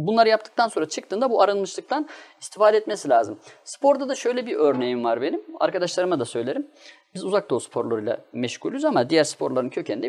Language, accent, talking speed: Turkish, native, 165 wpm